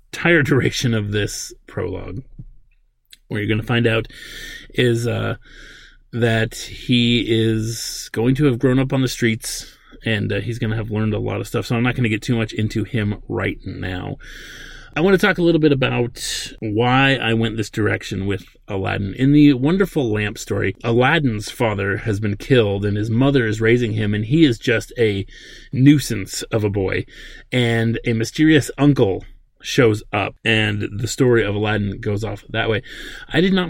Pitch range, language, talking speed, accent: 105-125 Hz, English, 185 wpm, American